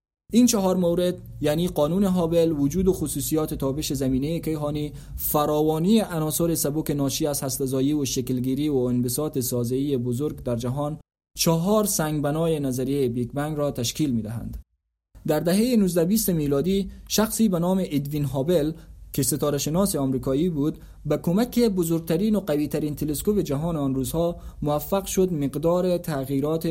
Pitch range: 140-180 Hz